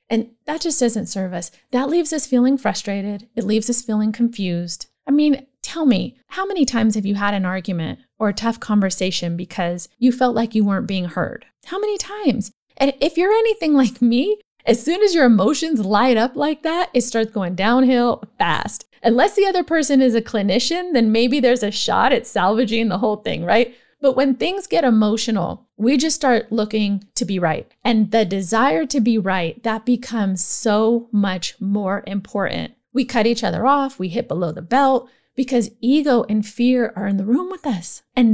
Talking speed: 195 wpm